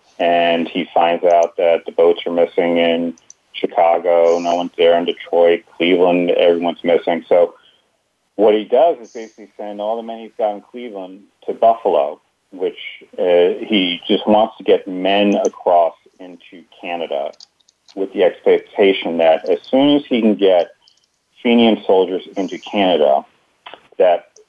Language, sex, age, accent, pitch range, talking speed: English, male, 40-59, American, 85-125 Hz, 150 wpm